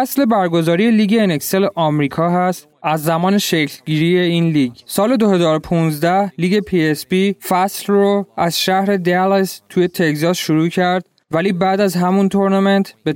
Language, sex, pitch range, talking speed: Persian, male, 160-200 Hz, 145 wpm